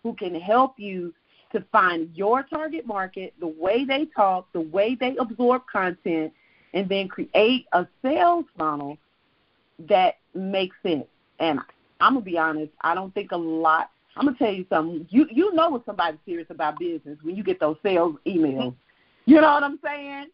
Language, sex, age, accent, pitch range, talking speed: English, female, 40-59, American, 185-270 Hz, 185 wpm